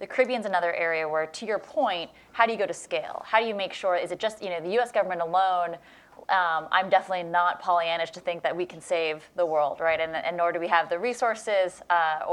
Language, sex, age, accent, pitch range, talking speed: English, female, 20-39, American, 165-195 Hz, 250 wpm